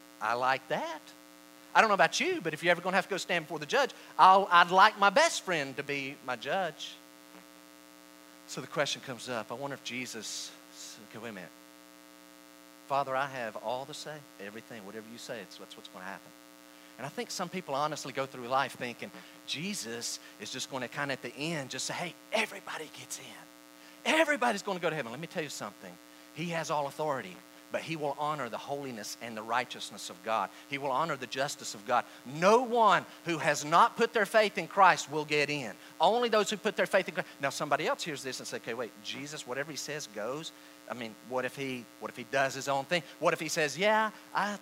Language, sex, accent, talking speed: English, male, American, 225 wpm